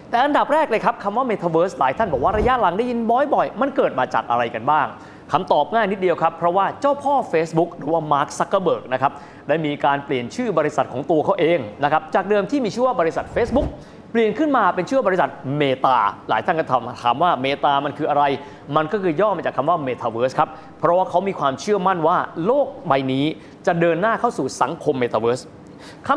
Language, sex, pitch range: Thai, male, 145-220 Hz